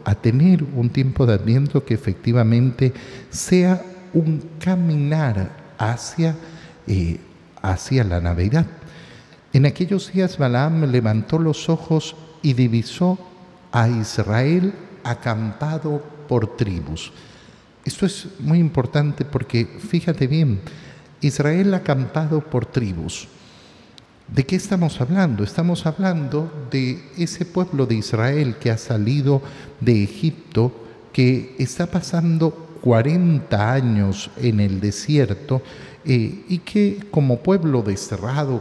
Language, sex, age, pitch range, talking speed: Spanish, male, 50-69, 115-165 Hz, 110 wpm